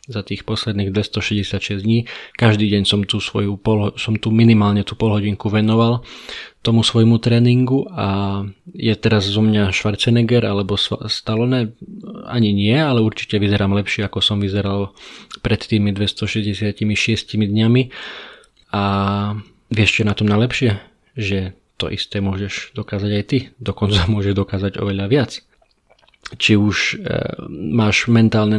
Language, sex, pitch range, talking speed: Slovak, male, 100-115 Hz, 130 wpm